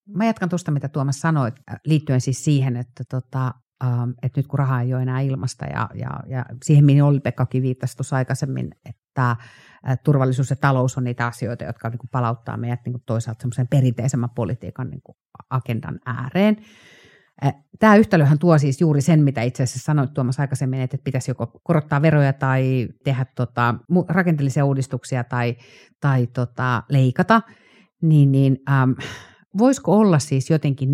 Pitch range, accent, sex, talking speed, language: 125-150 Hz, native, female, 145 wpm, Finnish